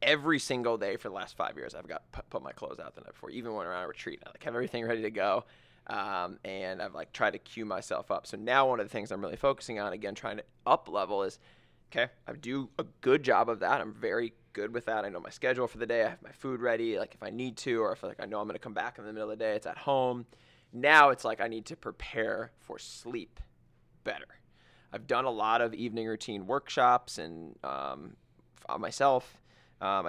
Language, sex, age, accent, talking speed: English, male, 20-39, American, 255 wpm